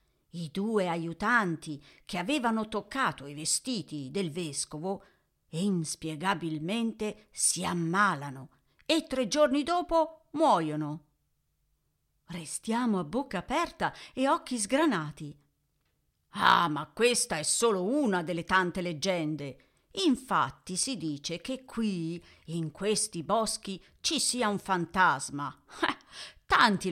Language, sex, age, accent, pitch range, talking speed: Italian, female, 50-69, native, 165-235 Hz, 105 wpm